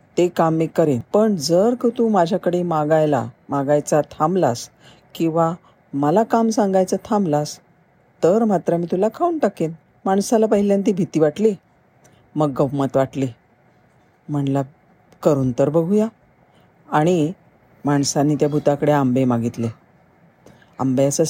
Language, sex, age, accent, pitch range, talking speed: Marathi, female, 40-59, native, 140-185 Hz, 120 wpm